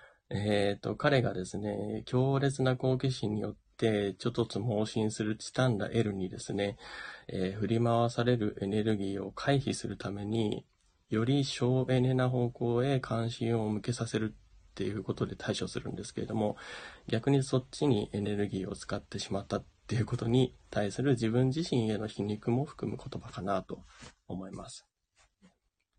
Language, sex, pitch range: Japanese, male, 100-125 Hz